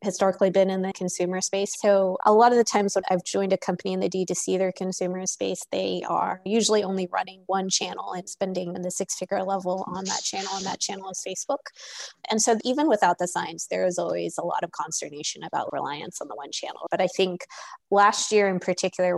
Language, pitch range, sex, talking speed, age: English, 170-195 Hz, female, 225 wpm, 20-39